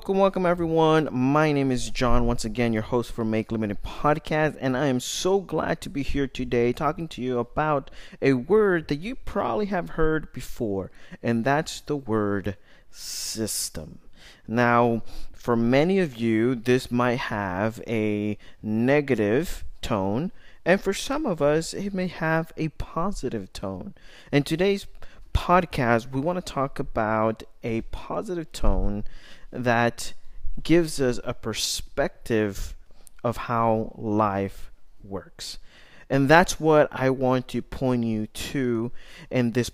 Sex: male